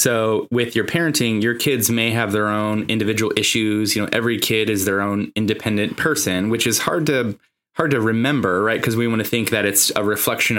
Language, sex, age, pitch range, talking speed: English, male, 20-39, 105-120 Hz, 215 wpm